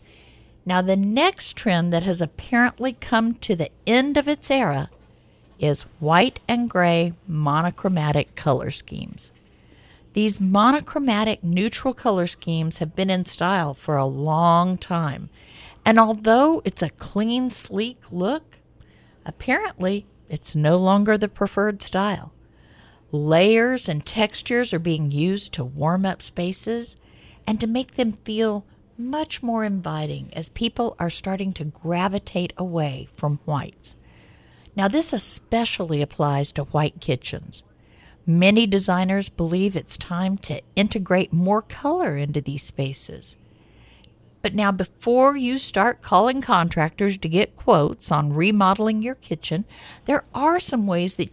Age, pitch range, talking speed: 50-69, 160-225 Hz, 130 wpm